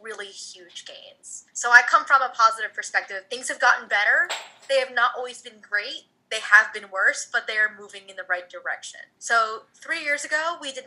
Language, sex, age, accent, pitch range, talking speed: English, female, 20-39, American, 185-235 Hz, 210 wpm